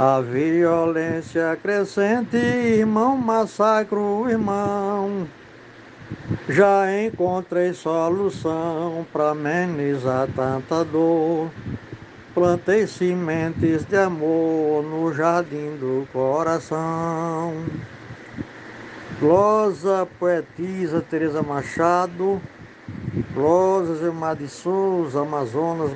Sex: male